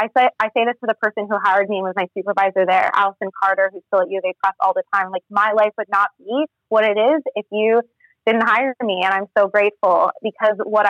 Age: 20-39